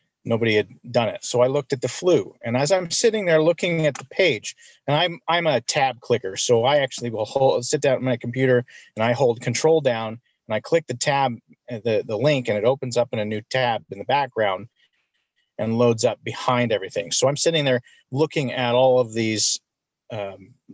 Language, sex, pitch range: English, male, 120-150 Hz